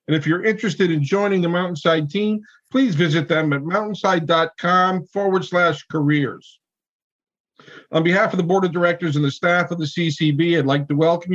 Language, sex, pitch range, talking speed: English, male, 150-195 Hz, 180 wpm